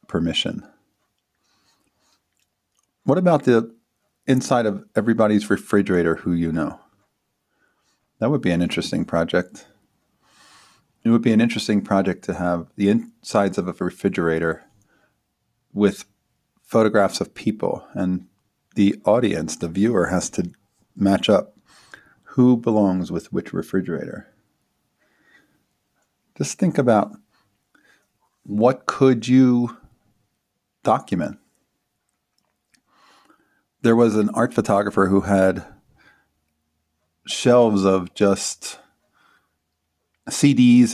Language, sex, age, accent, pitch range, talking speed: English, male, 40-59, American, 90-110 Hz, 95 wpm